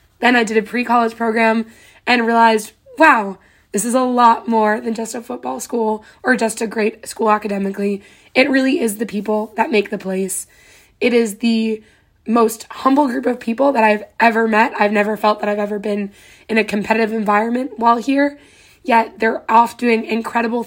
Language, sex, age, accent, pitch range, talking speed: English, female, 20-39, American, 215-240 Hz, 185 wpm